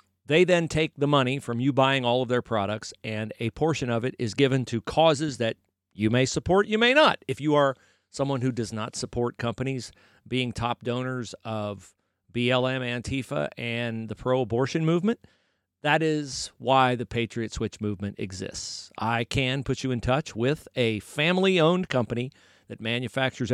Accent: American